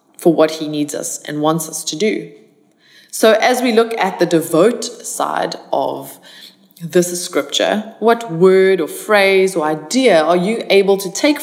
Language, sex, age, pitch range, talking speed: English, female, 20-39, 180-235 Hz, 170 wpm